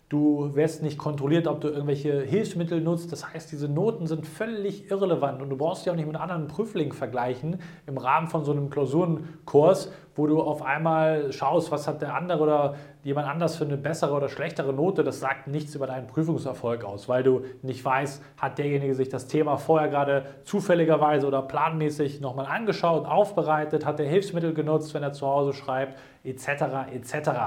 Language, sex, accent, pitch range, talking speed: German, male, German, 140-170 Hz, 185 wpm